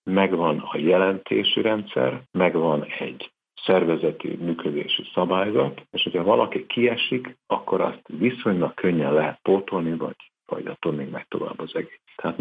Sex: male